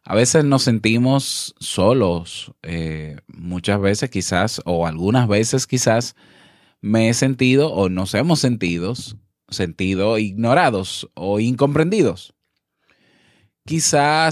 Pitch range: 100-135 Hz